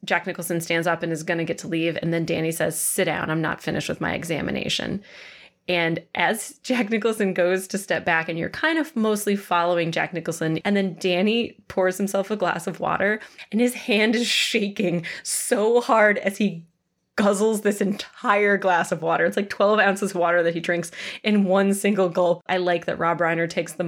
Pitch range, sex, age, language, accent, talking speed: 170-210 Hz, female, 20-39, English, American, 210 wpm